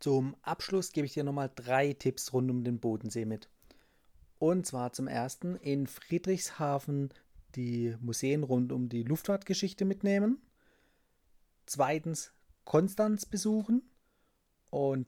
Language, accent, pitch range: German, German, 125-155 Hz